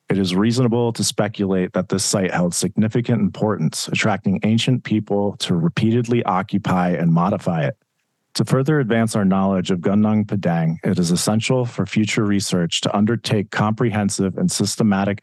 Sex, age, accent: male, 40-59, American